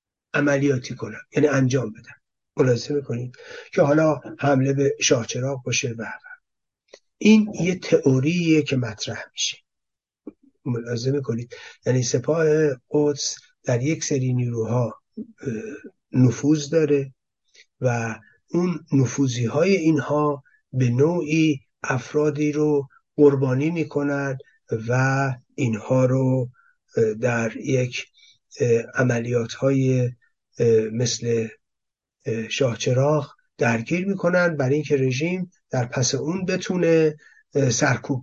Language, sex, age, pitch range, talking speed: Persian, male, 60-79, 120-150 Hz, 95 wpm